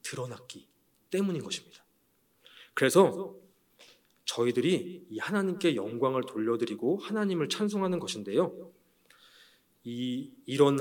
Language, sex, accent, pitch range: Korean, male, native, 135-205 Hz